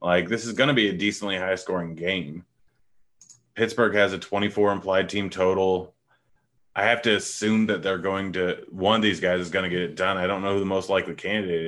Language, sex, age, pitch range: English, male, 30-49, 85-100 Hz